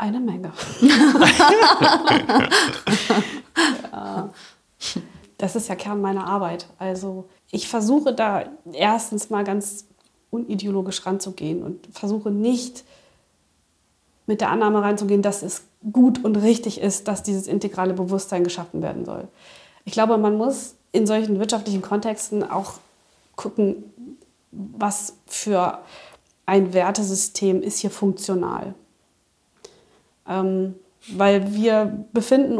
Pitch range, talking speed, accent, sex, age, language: 195-235 Hz, 105 wpm, German, female, 20-39, German